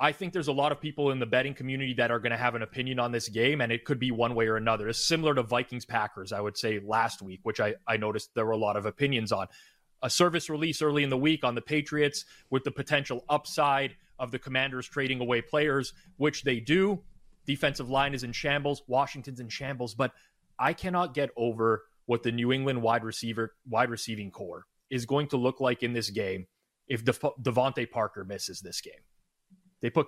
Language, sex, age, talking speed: English, male, 30-49, 220 wpm